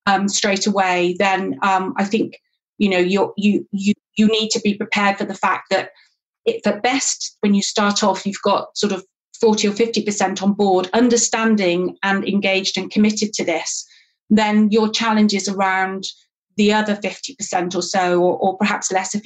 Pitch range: 195-225 Hz